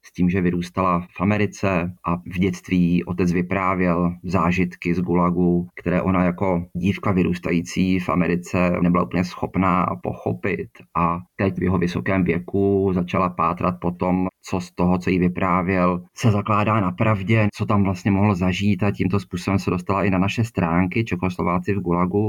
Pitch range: 90-95 Hz